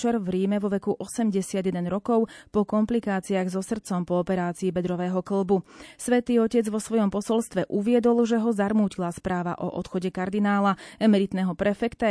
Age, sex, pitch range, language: 30-49, female, 195-235 Hz, Slovak